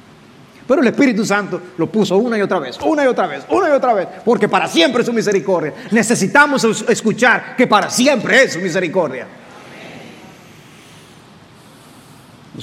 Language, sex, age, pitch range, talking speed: English, male, 40-59, 160-235 Hz, 155 wpm